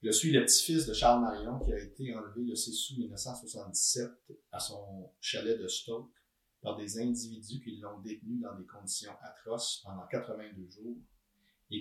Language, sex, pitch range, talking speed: French, male, 105-120 Hz, 175 wpm